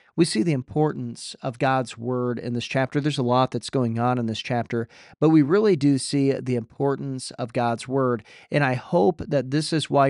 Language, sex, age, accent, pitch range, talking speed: English, male, 40-59, American, 125-155 Hz, 215 wpm